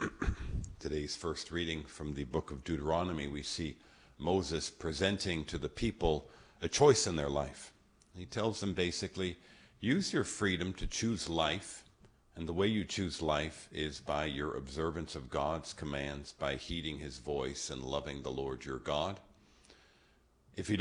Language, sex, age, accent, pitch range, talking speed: English, male, 50-69, American, 75-90 Hz, 160 wpm